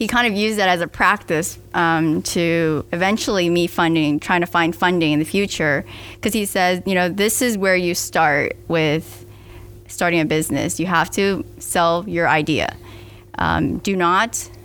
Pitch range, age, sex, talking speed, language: 165-200 Hz, 10-29, female, 175 wpm, English